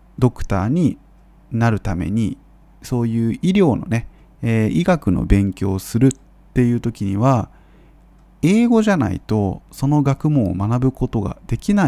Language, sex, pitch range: Japanese, male, 105-160 Hz